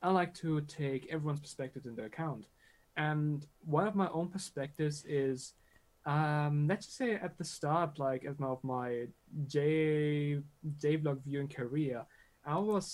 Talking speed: 145 wpm